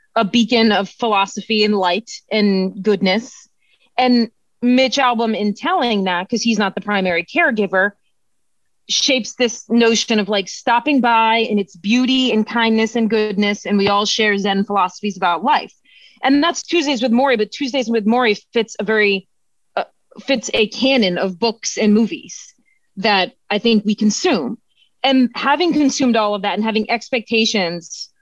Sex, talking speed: female, 160 wpm